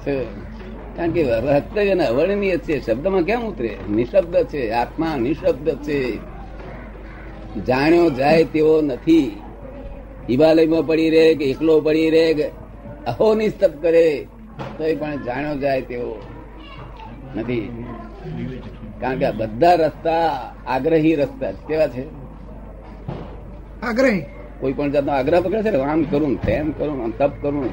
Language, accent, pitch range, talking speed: Gujarati, native, 120-170 Hz, 65 wpm